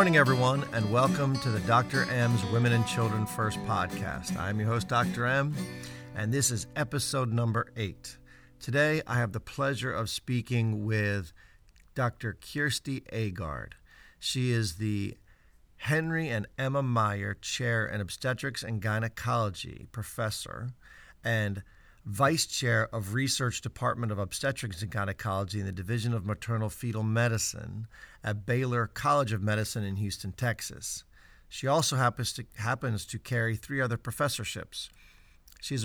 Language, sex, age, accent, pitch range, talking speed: English, male, 50-69, American, 105-125 Hz, 140 wpm